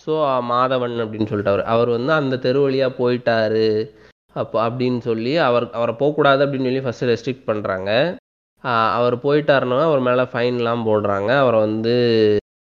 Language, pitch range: Tamil, 110-130 Hz